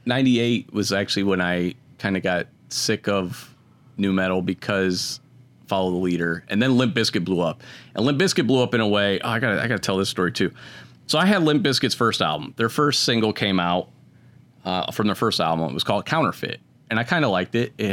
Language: English